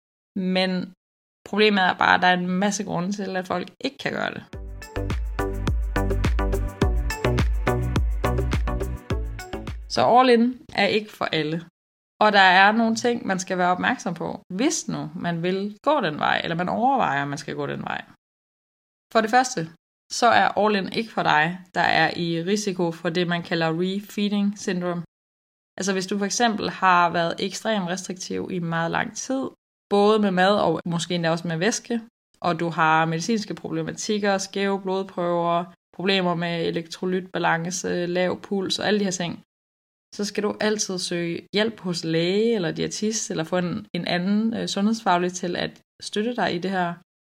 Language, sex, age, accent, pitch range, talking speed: Danish, female, 20-39, native, 165-205 Hz, 170 wpm